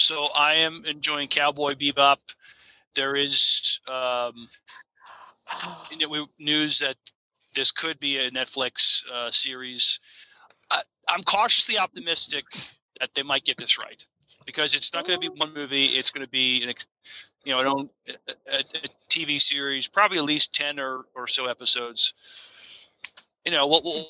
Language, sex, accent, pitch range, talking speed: English, male, American, 120-145 Hz, 155 wpm